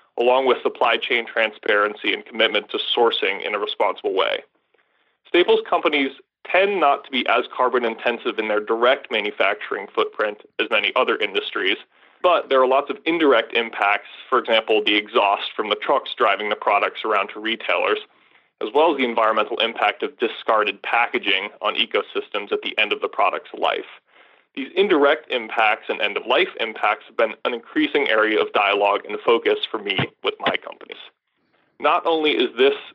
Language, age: English, 20-39